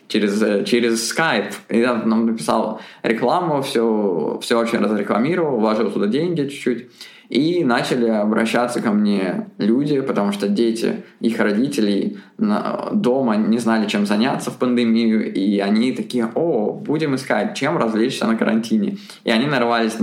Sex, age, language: male, 20-39, Russian